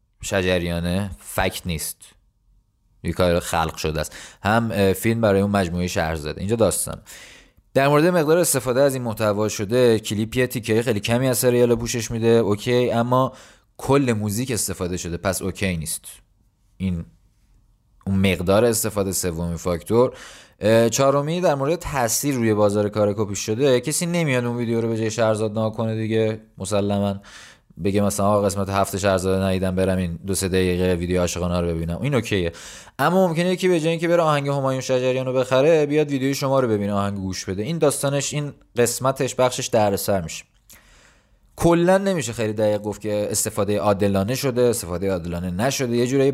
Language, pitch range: Persian, 95-125 Hz